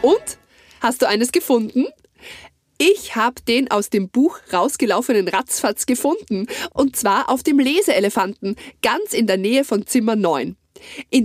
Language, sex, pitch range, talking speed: German, female, 190-260 Hz, 145 wpm